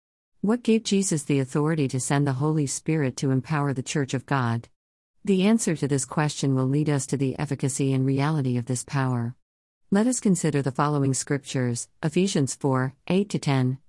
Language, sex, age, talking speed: English, female, 50-69, 180 wpm